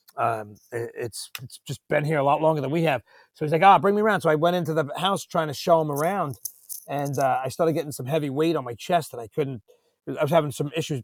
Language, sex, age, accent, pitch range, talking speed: English, male, 30-49, American, 140-180 Hz, 265 wpm